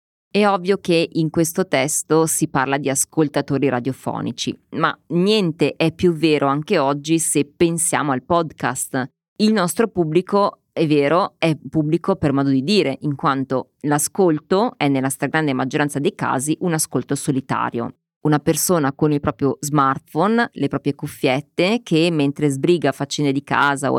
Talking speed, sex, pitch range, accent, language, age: 155 wpm, female, 140-175 Hz, native, Italian, 20-39